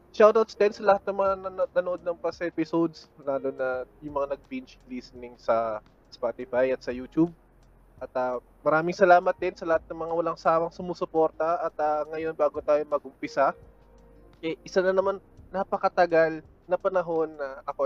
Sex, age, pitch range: male, 20-39, 130-170 Hz